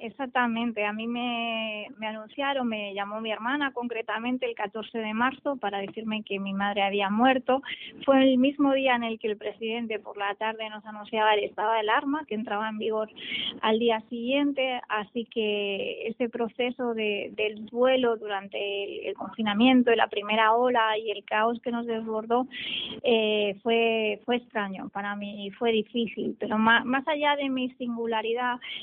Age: 20-39